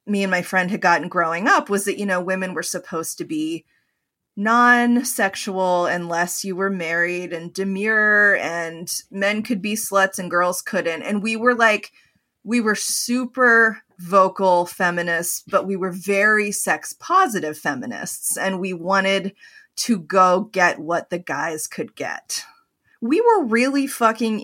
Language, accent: English, American